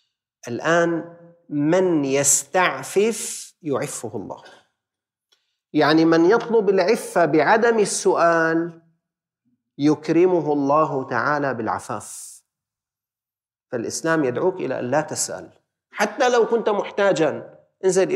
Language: Arabic